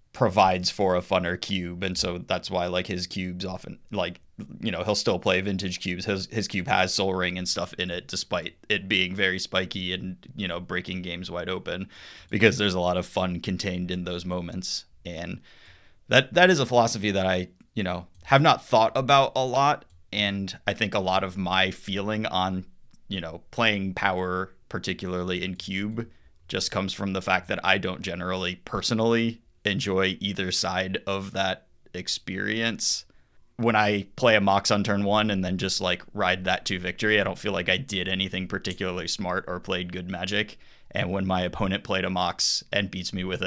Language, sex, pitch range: English, male, 90-100 Hz